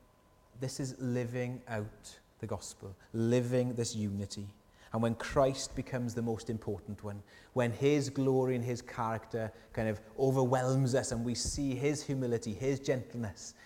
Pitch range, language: 105-125 Hz, English